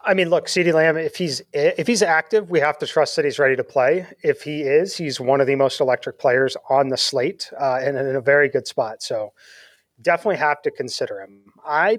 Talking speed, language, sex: 230 wpm, English, male